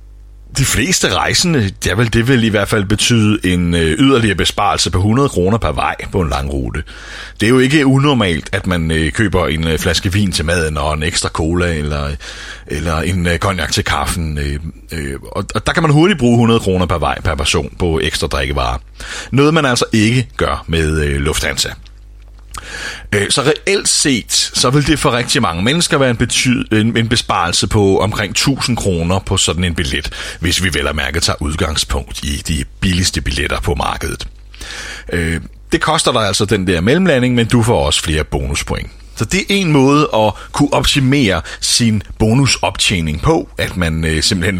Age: 30-49